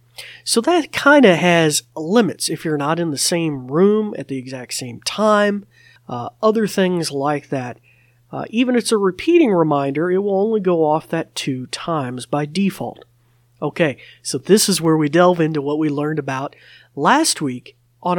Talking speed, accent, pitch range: 180 wpm, American, 135-175 Hz